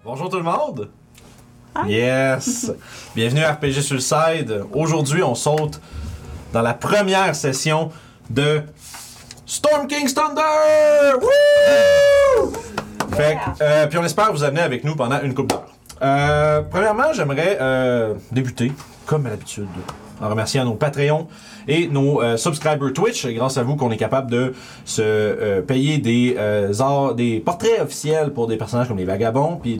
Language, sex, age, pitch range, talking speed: French, male, 30-49, 120-160 Hz, 155 wpm